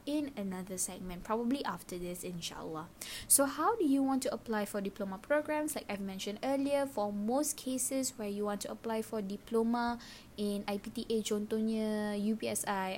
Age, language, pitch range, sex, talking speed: 10-29, Malay, 200-240 Hz, female, 160 wpm